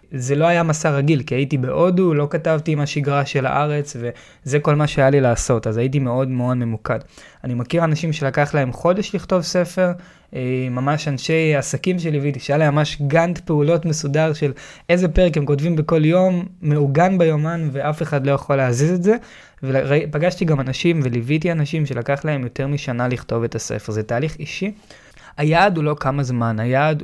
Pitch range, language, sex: 135-165 Hz, Hebrew, male